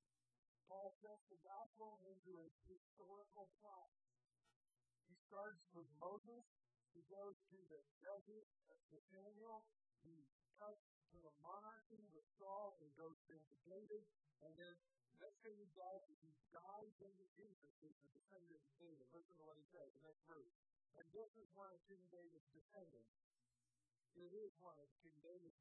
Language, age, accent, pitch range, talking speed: English, 50-69, American, 130-195 Hz, 155 wpm